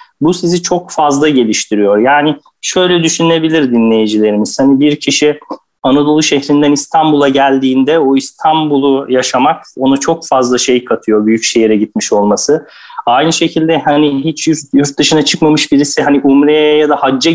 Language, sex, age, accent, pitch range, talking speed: Turkish, male, 30-49, native, 130-165 Hz, 140 wpm